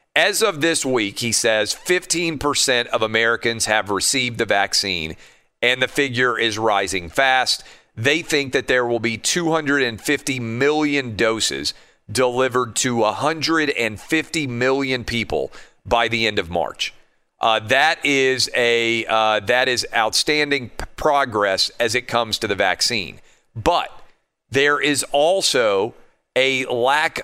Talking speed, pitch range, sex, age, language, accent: 125 wpm, 115-145 Hz, male, 40-59, English, American